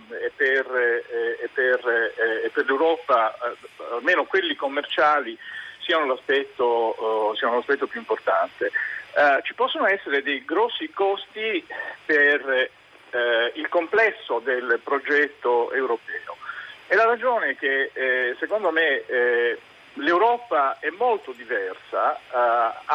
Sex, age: male, 50-69